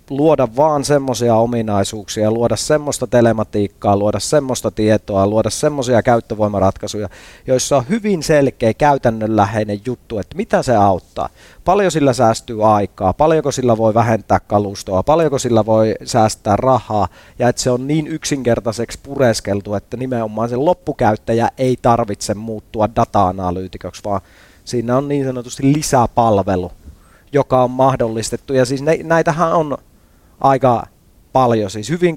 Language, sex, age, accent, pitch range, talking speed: Finnish, male, 30-49, native, 105-135 Hz, 130 wpm